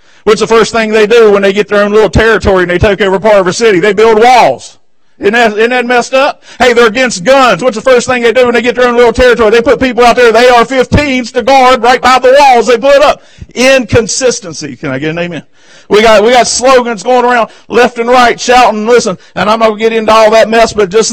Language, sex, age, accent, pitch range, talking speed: English, male, 50-69, American, 215-270 Hz, 260 wpm